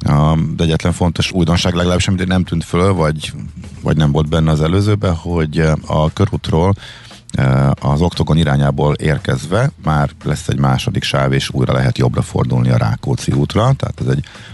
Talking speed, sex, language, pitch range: 160 wpm, male, Hungarian, 70-95 Hz